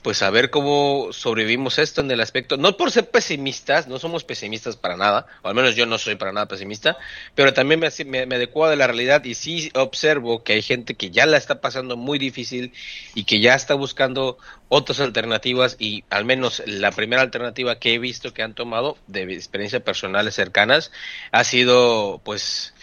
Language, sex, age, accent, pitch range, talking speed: Spanish, male, 40-59, Mexican, 115-145 Hz, 195 wpm